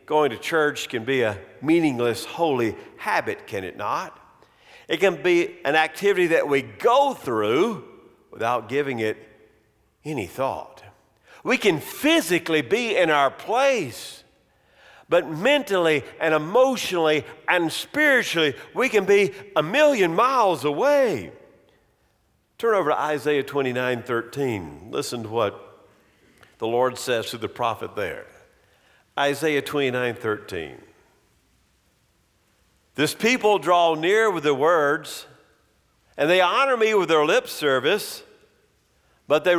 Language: English